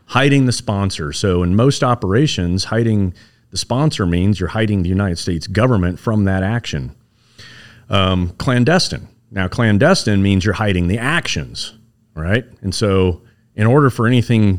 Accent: American